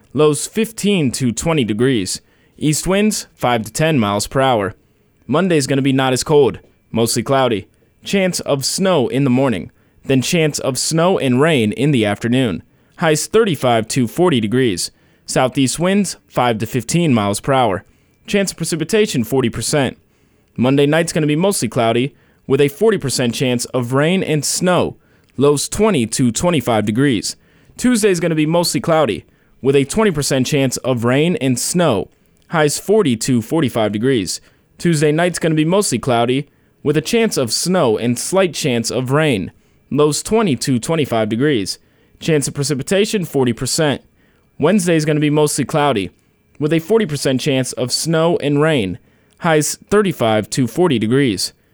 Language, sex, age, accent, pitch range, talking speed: English, male, 20-39, American, 125-170 Hz, 160 wpm